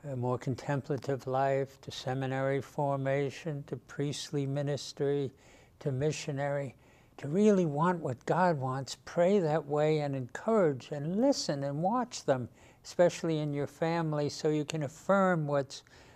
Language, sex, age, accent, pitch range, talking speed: English, male, 60-79, American, 140-175 Hz, 135 wpm